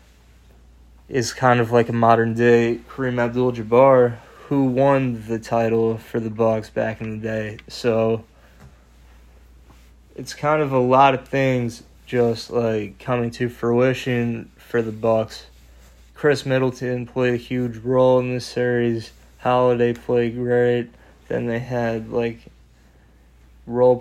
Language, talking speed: English, 135 wpm